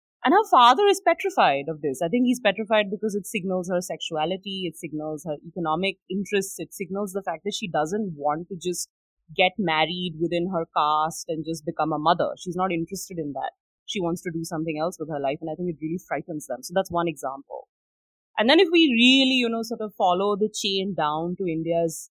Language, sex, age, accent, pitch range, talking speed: English, female, 30-49, Indian, 160-200 Hz, 220 wpm